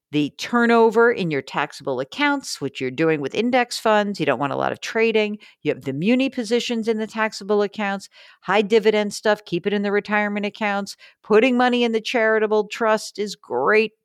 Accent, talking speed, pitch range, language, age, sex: American, 190 wpm, 150-230 Hz, English, 50-69, female